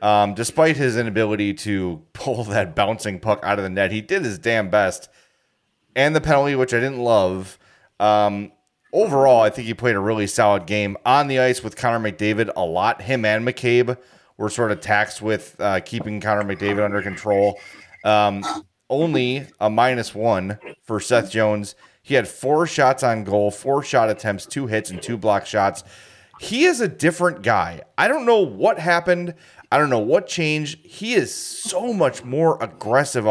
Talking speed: 180 wpm